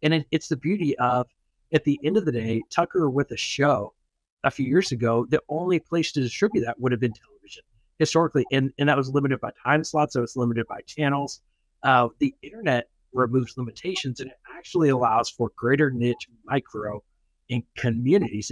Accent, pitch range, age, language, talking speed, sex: American, 125-155 Hz, 50-69, English, 190 wpm, male